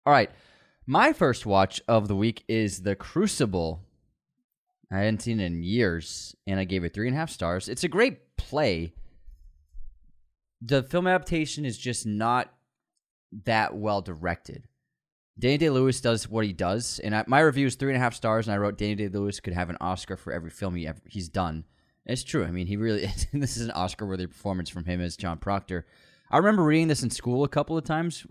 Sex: male